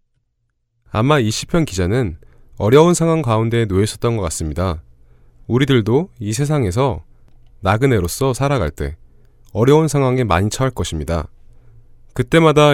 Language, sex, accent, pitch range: Korean, male, native, 90-135 Hz